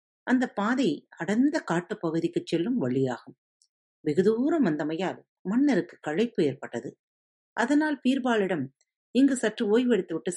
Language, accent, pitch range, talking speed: Tamil, native, 160-240 Hz, 75 wpm